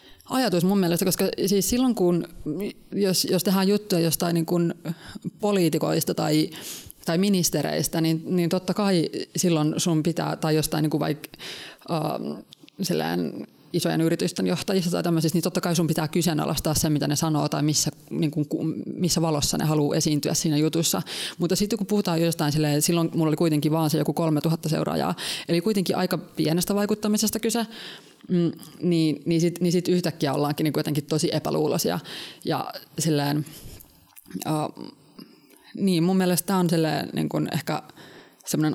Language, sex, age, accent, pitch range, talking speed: Finnish, female, 20-39, native, 150-180 Hz, 150 wpm